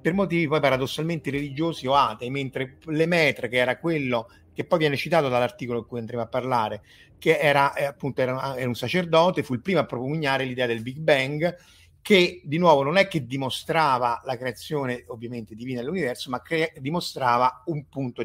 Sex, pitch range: male, 120-150 Hz